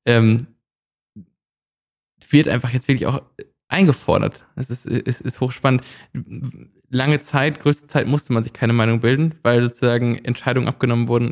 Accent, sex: German, male